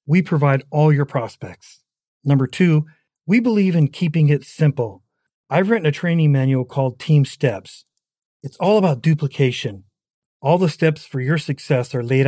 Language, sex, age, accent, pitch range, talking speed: English, male, 40-59, American, 135-175 Hz, 160 wpm